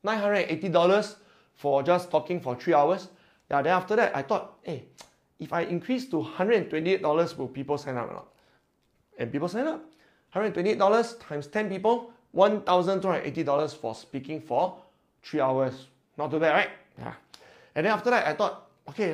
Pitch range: 135-195 Hz